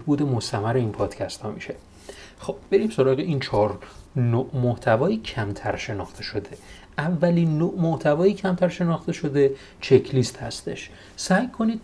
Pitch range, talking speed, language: 110-145 Hz, 135 wpm, Persian